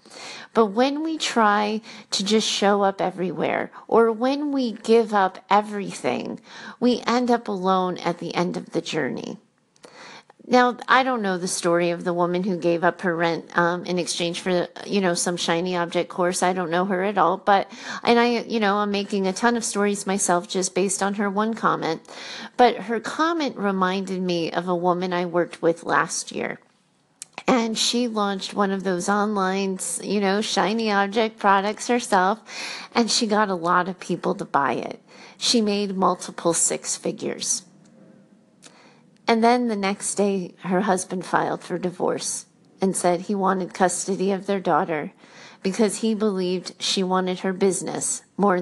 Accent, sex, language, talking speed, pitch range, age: American, female, English, 175 wpm, 180-220 Hz, 40-59